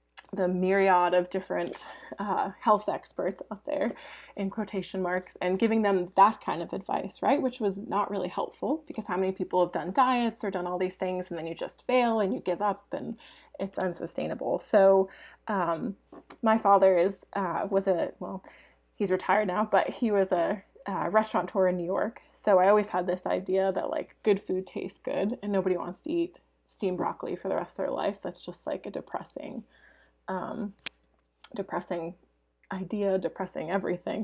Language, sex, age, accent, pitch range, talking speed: English, female, 20-39, American, 180-210 Hz, 185 wpm